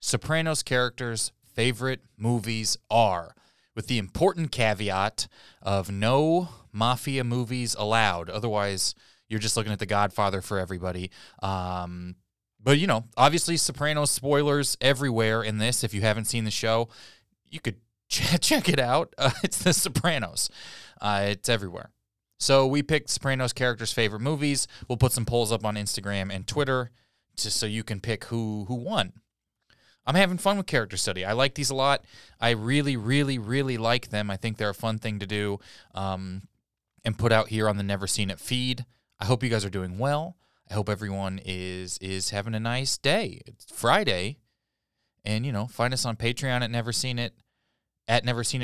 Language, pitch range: English, 105-130 Hz